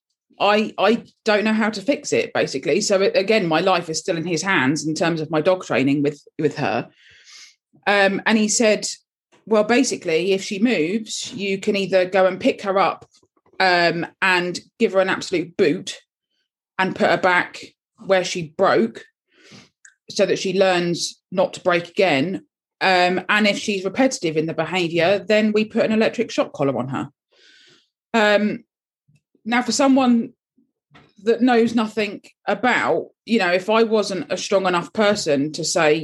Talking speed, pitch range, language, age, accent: 170 wpm, 170-225 Hz, English, 20-39, British